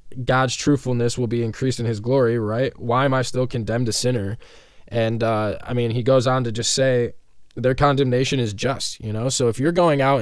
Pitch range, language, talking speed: 110-125 Hz, English, 215 wpm